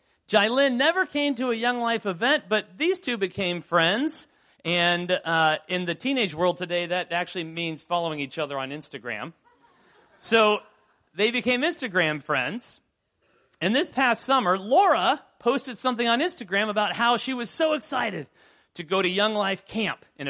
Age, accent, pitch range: 40-59, American, 150-245 Hz